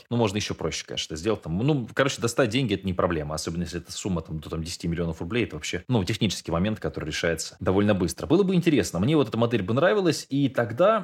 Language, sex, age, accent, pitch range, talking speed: Russian, male, 20-39, native, 90-120 Hz, 245 wpm